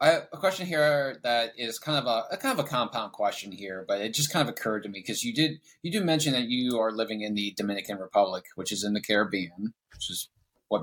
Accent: American